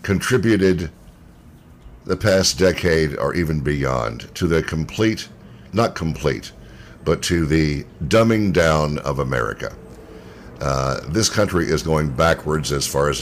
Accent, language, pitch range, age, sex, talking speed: American, English, 75-95 Hz, 60-79, male, 125 wpm